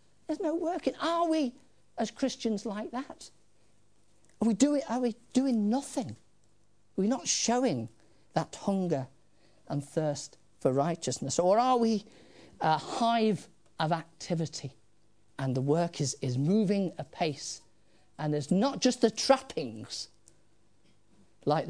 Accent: British